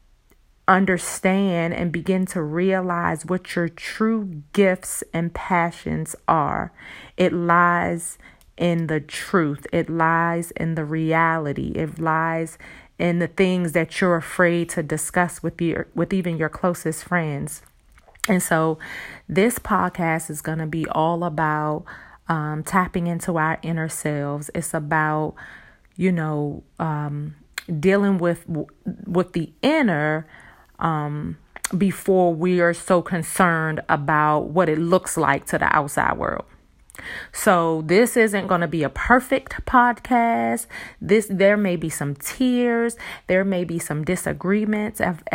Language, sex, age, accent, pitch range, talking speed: English, female, 30-49, American, 155-190 Hz, 135 wpm